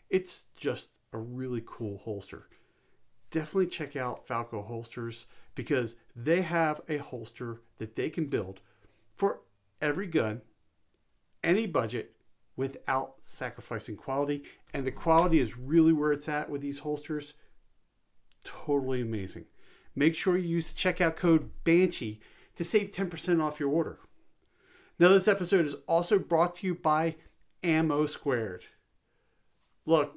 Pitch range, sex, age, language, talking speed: 125-180 Hz, male, 40-59, English, 135 wpm